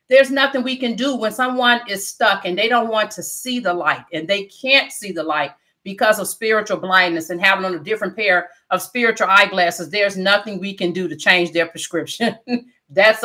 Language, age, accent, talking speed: English, 40-59, American, 210 wpm